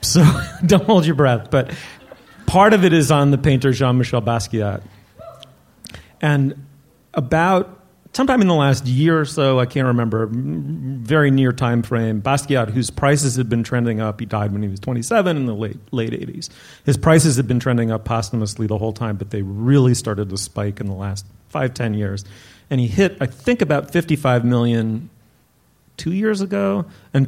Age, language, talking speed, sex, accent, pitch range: 40-59, English, 180 wpm, male, American, 110-140 Hz